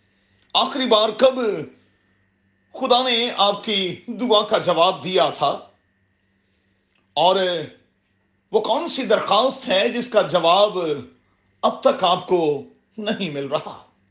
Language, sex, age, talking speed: Urdu, male, 40-59, 120 wpm